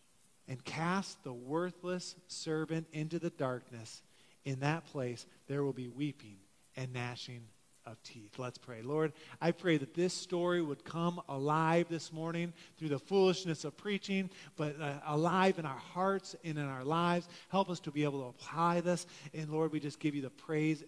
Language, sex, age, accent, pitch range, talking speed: English, male, 40-59, American, 155-225 Hz, 180 wpm